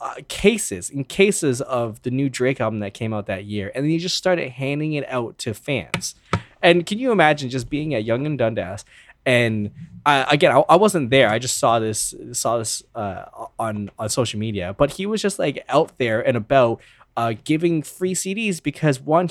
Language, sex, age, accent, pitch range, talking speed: English, male, 20-39, American, 110-165 Hz, 205 wpm